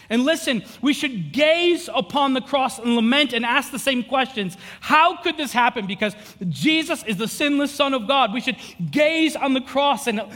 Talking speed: 195 wpm